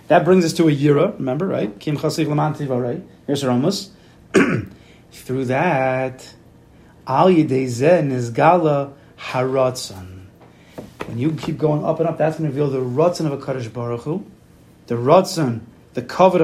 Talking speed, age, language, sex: 145 wpm, 30-49, English, male